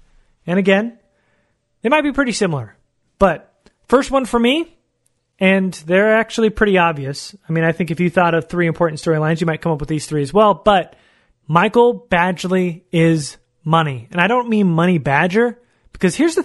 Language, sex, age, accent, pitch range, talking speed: English, male, 30-49, American, 165-220 Hz, 185 wpm